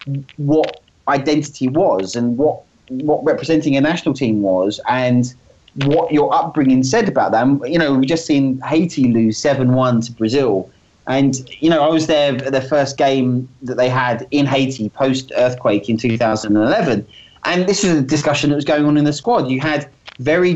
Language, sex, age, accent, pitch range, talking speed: English, male, 30-49, British, 120-150 Hz, 180 wpm